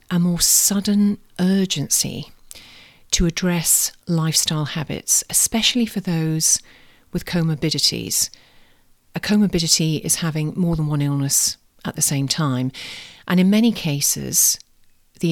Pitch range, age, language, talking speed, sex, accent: 150-190 Hz, 40-59, English, 120 wpm, female, British